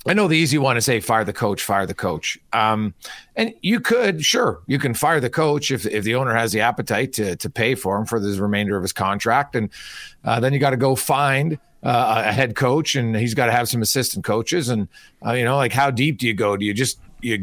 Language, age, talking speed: English, 40-59, 260 wpm